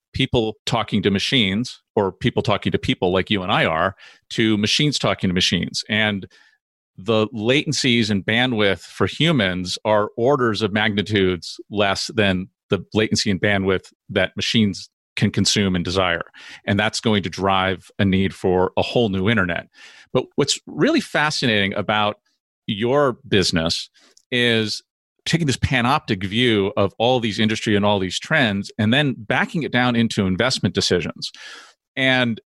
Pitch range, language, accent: 100-120 Hz, English, American